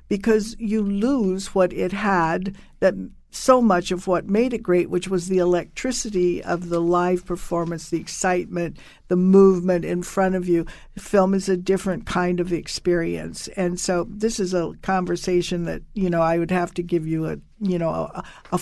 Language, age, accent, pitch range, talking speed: English, 60-79, American, 175-200 Hz, 185 wpm